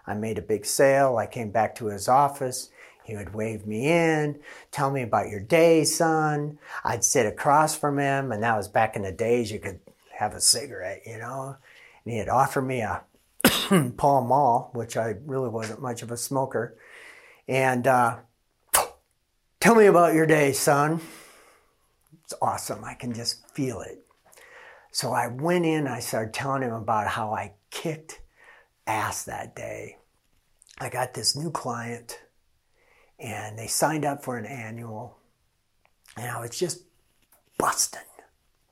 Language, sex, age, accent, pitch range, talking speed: English, male, 50-69, American, 110-150 Hz, 160 wpm